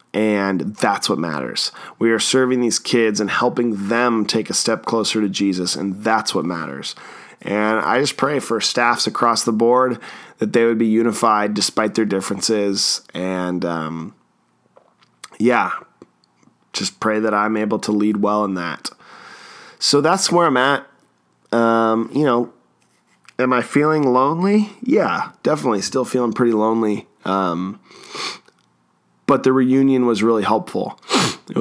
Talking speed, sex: 150 wpm, male